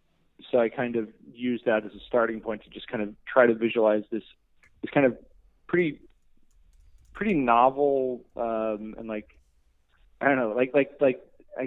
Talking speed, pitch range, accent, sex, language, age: 175 wpm, 100-120 Hz, American, male, English, 20-39